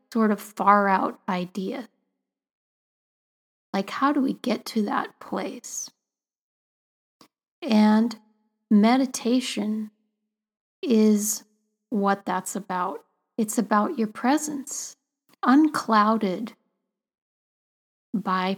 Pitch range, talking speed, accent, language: 205-255 Hz, 80 wpm, American, English